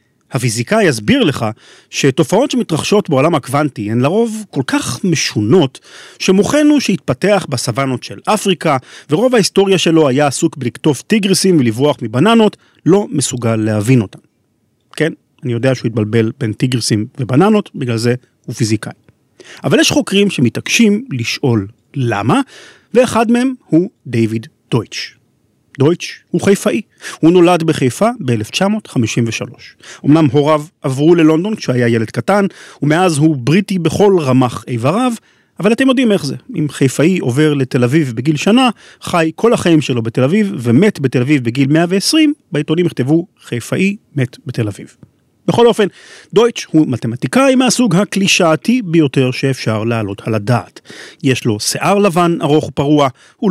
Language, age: Hebrew, 40-59